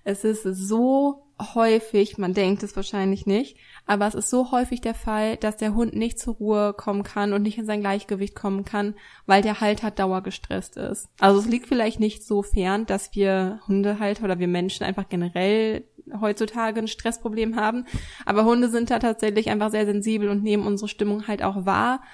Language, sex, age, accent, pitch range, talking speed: German, female, 20-39, German, 195-220 Hz, 190 wpm